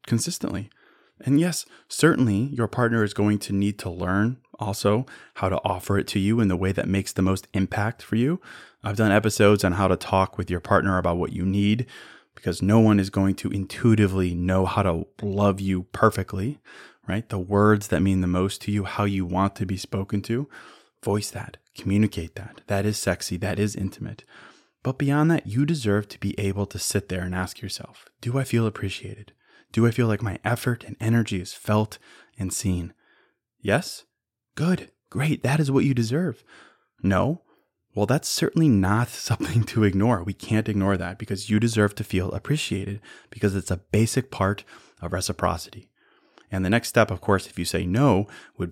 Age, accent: 20-39, American